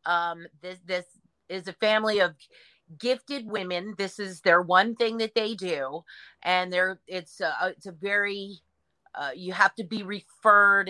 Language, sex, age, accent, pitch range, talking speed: English, female, 40-59, American, 170-210 Hz, 165 wpm